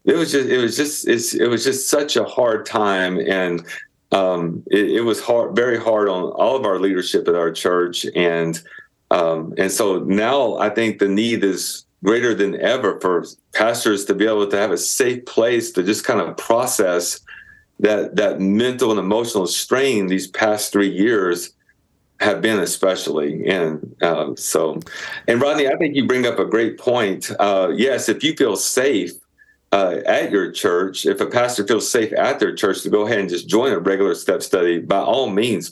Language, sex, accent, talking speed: English, male, American, 195 wpm